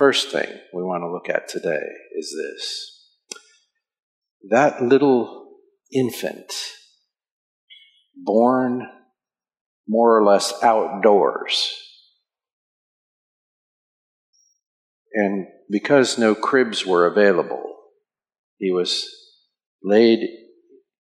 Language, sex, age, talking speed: English, male, 50-69, 80 wpm